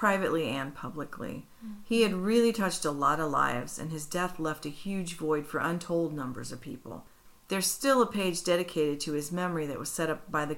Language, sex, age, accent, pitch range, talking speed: English, female, 40-59, American, 150-185 Hz, 210 wpm